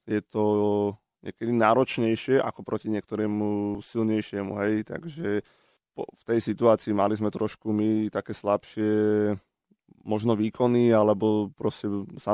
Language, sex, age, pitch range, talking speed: Slovak, male, 20-39, 105-110 Hz, 115 wpm